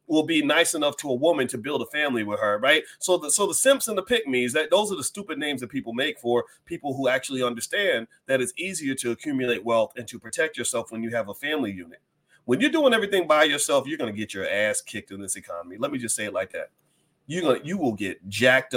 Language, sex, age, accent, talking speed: English, male, 30-49, American, 255 wpm